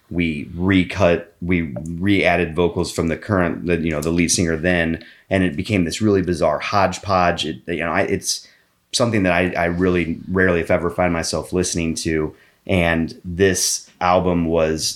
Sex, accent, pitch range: male, American, 80-90 Hz